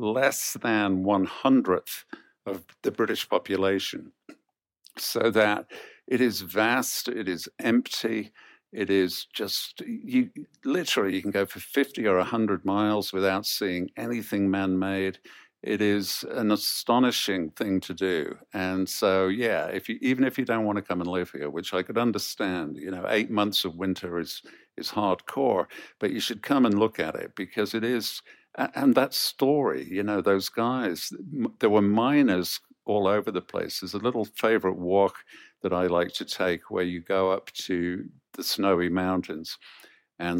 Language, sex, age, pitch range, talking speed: English, male, 50-69, 90-105 Hz, 165 wpm